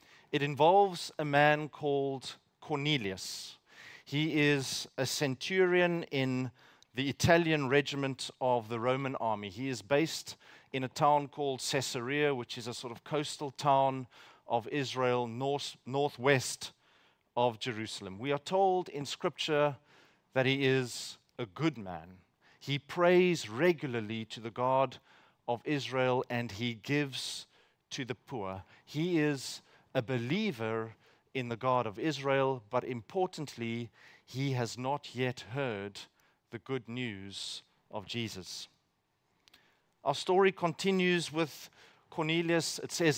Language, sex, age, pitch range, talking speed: English, male, 40-59, 125-150 Hz, 130 wpm